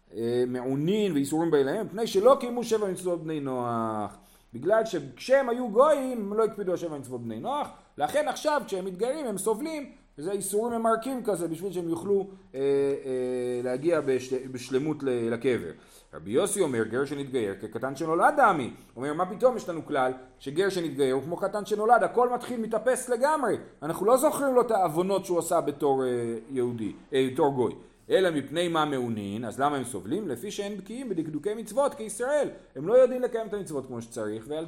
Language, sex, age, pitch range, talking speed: Hebrew, male, 40-59, 130-210 Hz, 165 wpm